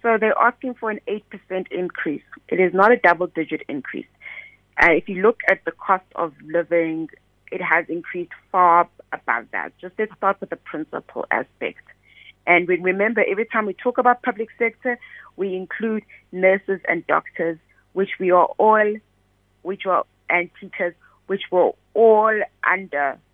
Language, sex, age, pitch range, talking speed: English, female, 30-49, 165-210 Hz, 160 wpm